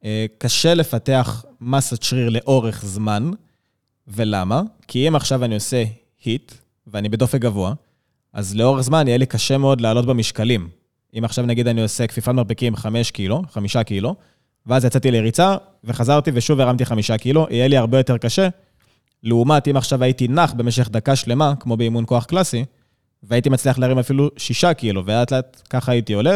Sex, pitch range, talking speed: male, 115-135 Hz, 160 wpm